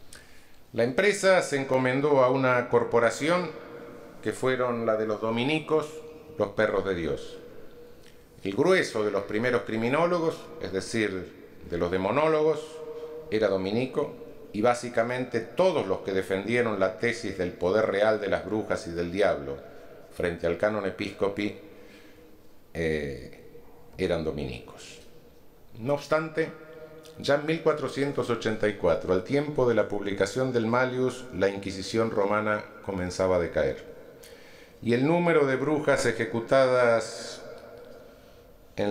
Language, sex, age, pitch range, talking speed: Spanish, male, 50-69, 105-150 Hz, 120 wpm